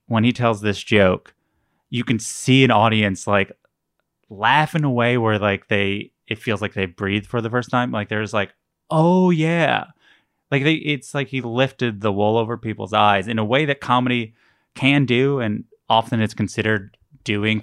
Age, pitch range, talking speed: 20-39, 105-125 Hz, 185 wpm